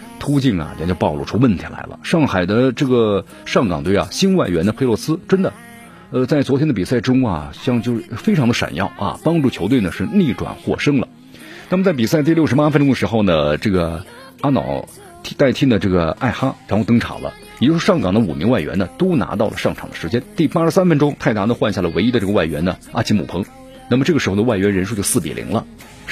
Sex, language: male, Chinese